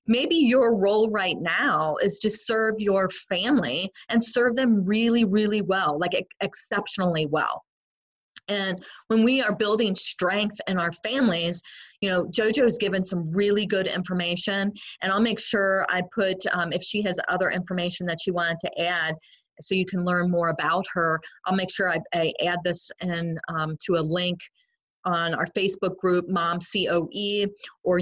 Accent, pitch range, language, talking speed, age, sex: American, 170-210 Hz, English, 170 wpm, 30-49, female